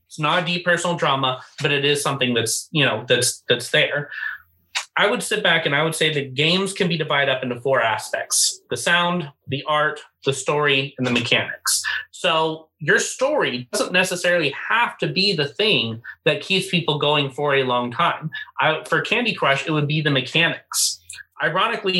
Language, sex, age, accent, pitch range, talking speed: English, male, 30-49, American, 135-170 Hz, 190 wpm